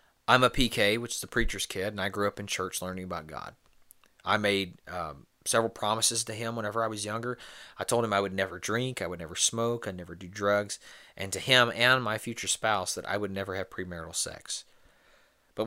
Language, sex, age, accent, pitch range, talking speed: English, male, 30-49, American, 90-115 Hz, 220 wpm